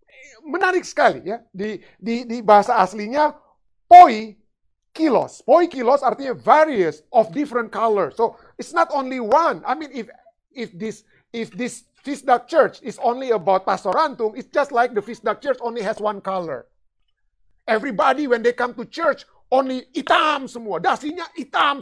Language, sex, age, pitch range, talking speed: Indonesian, male, 50-69, 215-300 Hz, 160 wpm